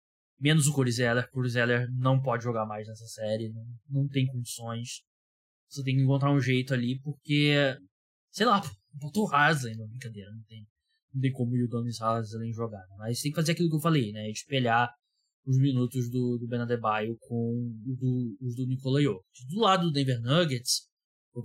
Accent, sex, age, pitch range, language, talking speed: Brazilian, male, 10-29, 120-150 Hz, Portuguese, 185 wpm